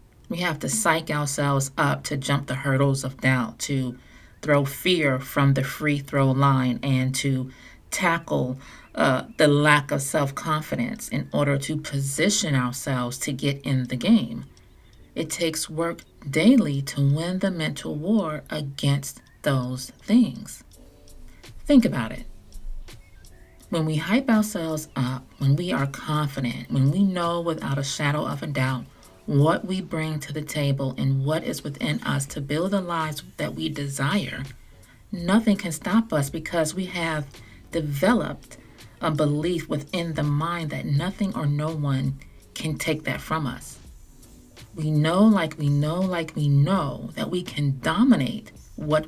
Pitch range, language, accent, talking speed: 130-165 Hz, English, American, 155 wpm